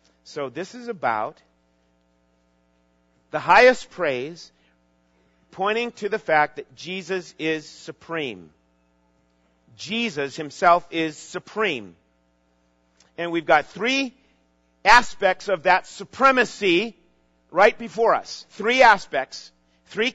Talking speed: 100 wpm